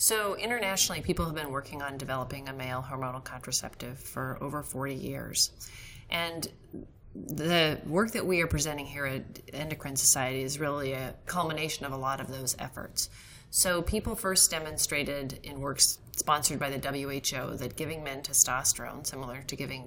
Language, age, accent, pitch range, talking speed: English, 30-49, American, 130-150 Hz, 165 wpm